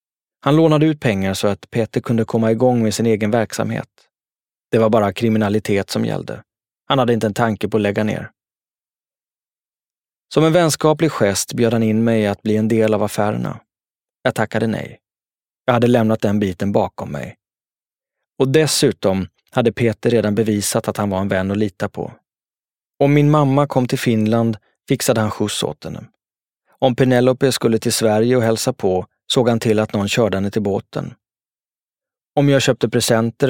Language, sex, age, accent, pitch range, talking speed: Swedish, male, 20-39, native, 105-130 Hz, 175 wpm